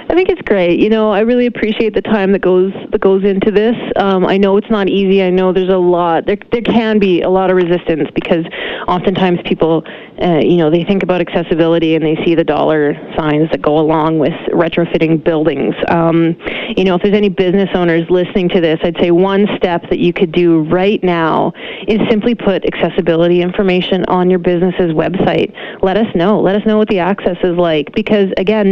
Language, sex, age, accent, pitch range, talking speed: English, female, 30-49, American, 170-210 Hz, 210 wpm